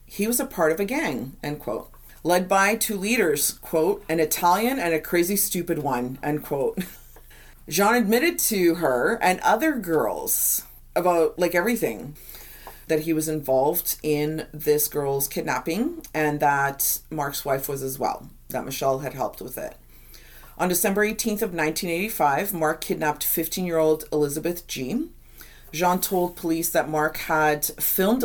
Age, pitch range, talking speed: 40-59, 150-180 Hz, 150 wpm